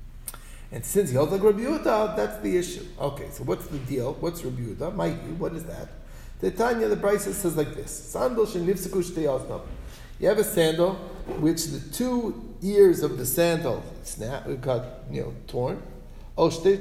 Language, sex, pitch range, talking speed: English, male, 130-175 Hz, 155 wpm